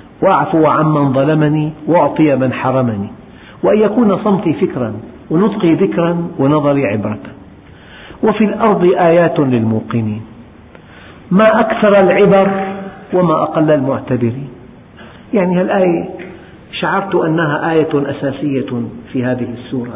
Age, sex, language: 50-69, male, Arabic